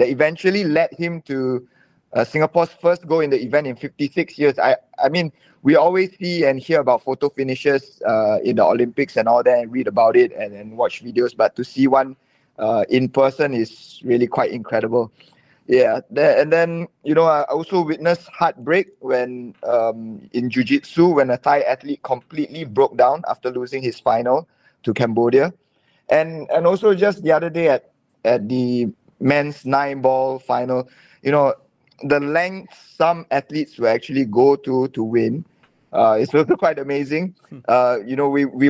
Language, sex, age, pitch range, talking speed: English, male, 20-39, 125-160 Hz, 180 wpm